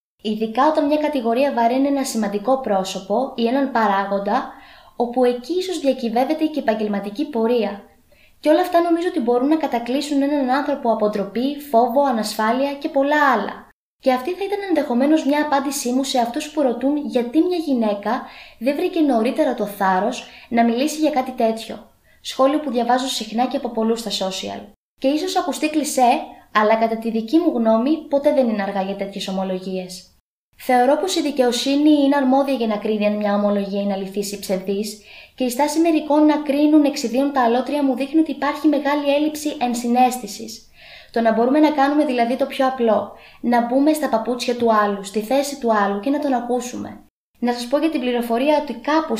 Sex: female